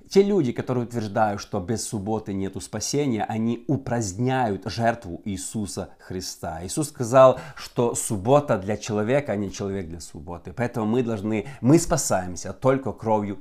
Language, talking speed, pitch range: Russian, 145 wpm, 100-135 Hz